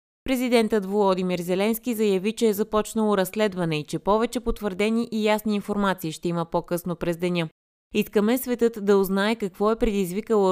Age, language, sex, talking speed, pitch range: 20-39, Bulgarian, female, 155 wpm, 170-220 Hz